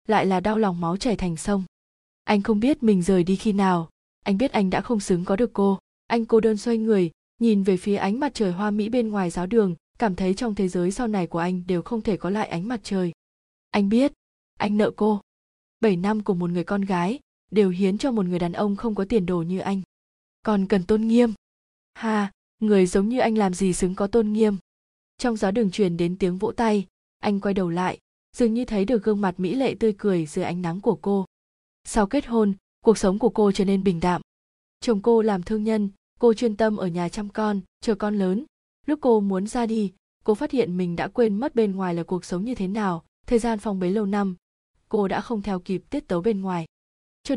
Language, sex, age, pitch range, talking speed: Vietnamese, female, 20-39, 185-225 Hz, 240 wpm